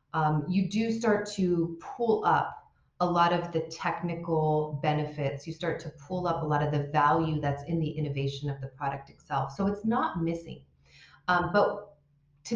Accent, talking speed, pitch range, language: American, 180 wpm, 150-195 Hz, English